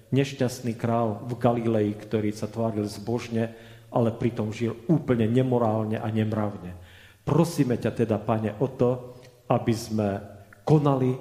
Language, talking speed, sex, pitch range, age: Slovak, 130 wpm, male, 100-125 Hz, 40-59